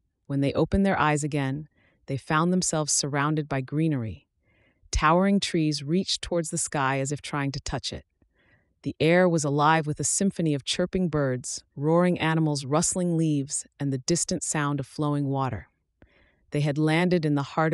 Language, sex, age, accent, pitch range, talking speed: English, female, 30-49, American, 135-165 Hz, 175 wpm